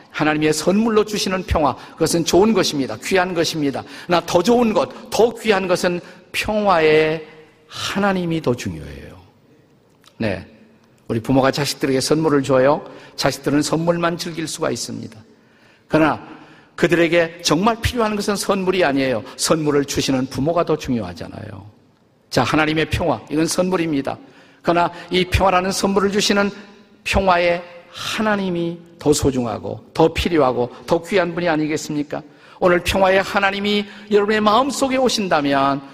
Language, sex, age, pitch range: Korean, male, 50-69, 145-195 Hz